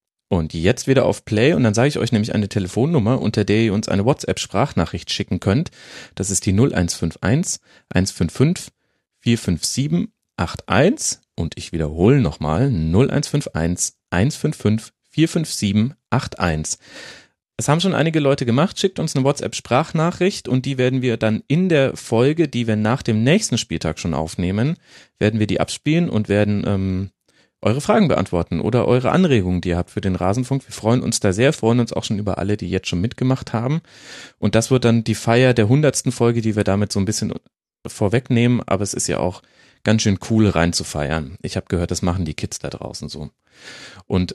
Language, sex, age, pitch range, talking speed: German, male, 40-59, 100-130 Hz, 180 wpm